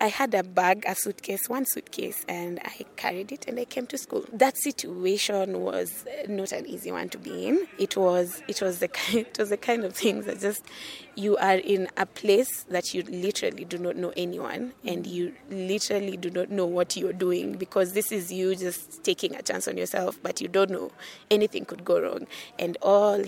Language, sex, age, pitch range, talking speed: English, female, 20-39, 185-245 Hz, 210 wpm